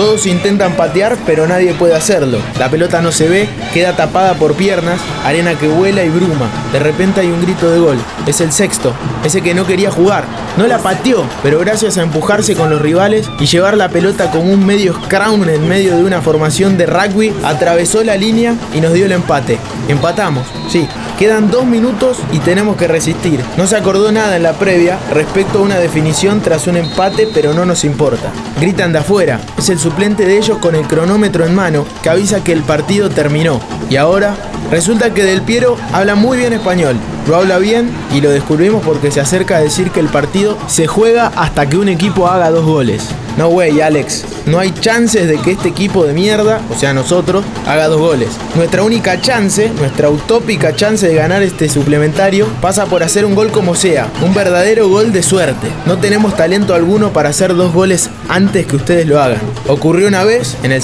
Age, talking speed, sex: 20-39, 205 wpm, male